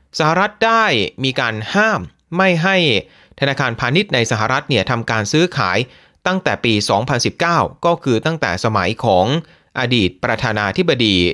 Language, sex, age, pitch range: Thai, male, 30-49, 115-180 Hz